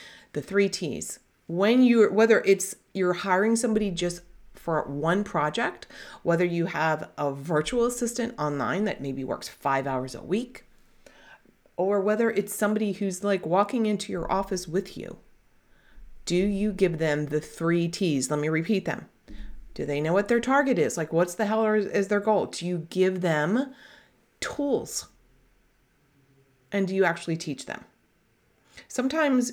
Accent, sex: American, female